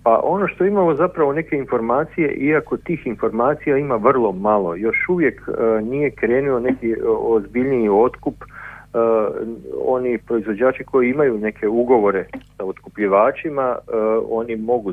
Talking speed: 135 wpm